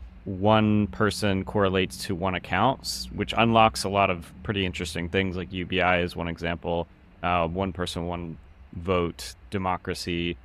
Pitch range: 85-95 Hz